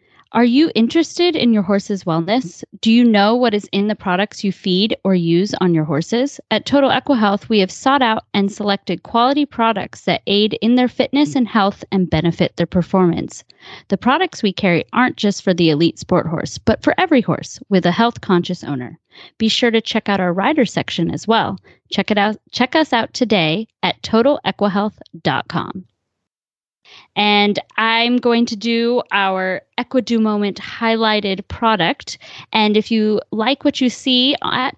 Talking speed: 175 wpm